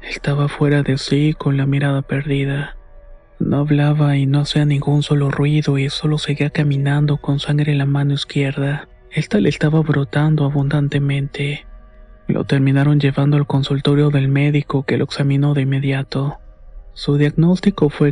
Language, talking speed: Spanish, 150 wpm